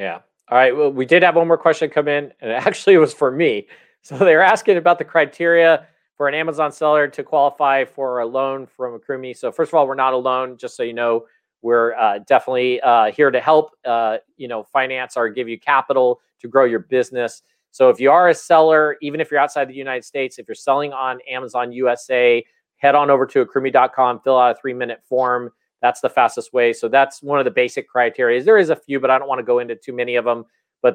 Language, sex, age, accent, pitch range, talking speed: English, male, 40-59, American, 125-165 Hz, 240 wpm